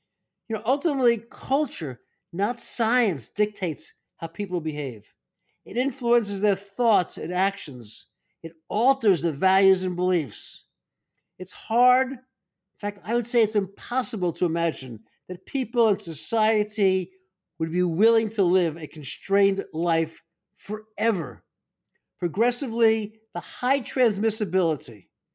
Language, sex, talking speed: English, male, 120 wpm